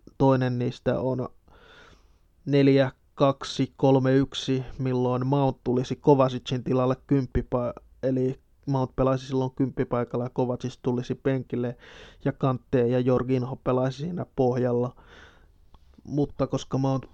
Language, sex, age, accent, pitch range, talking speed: Finnish, male, 20-39, native, 125-135 Hz, 100 wpm